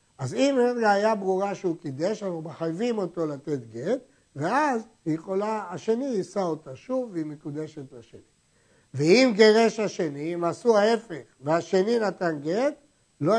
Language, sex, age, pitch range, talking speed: Hebrew, male, 60-79, 155-220 Hz, 145 wpm